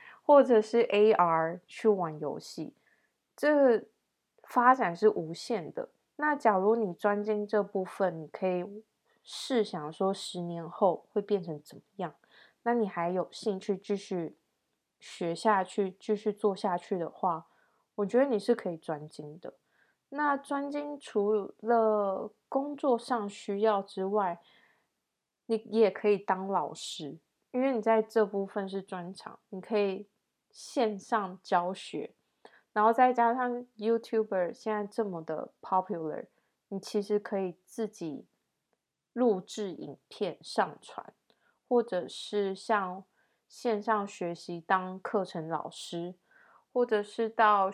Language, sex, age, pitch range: Chinese, female, 20-39, 185-230 Hz